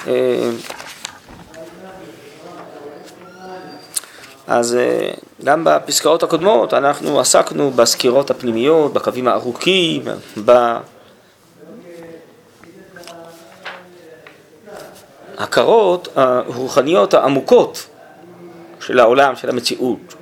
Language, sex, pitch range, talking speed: Hebrew, male, 125-180 Hz, 50 wpm